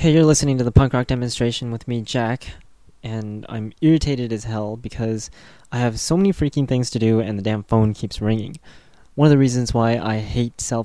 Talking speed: 215 wpm